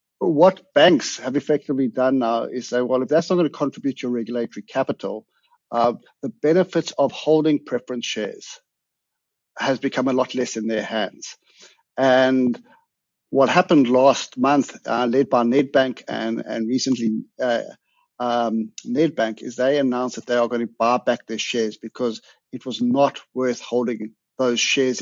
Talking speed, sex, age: 165 wpm, male, 60-79